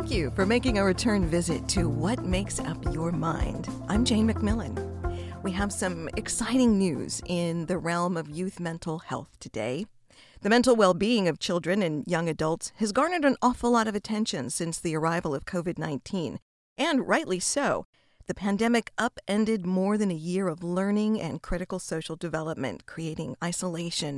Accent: American